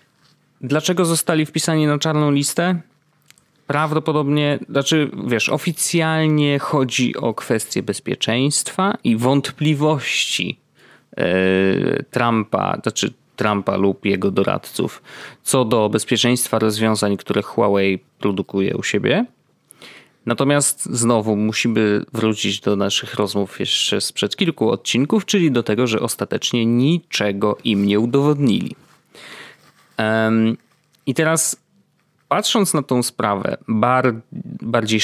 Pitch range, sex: 110-150 Hz, male